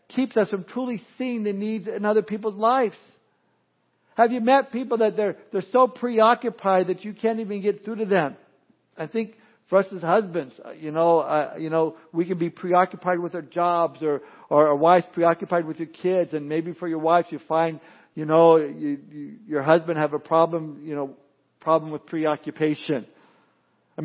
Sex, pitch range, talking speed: male, 155-205 Hz, 190 wpm